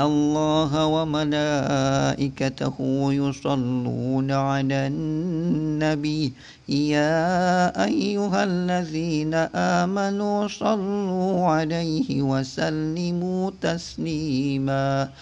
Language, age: Indonesian, 50-69